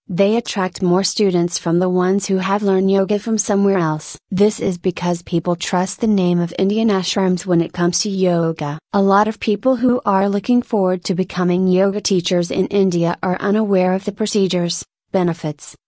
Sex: female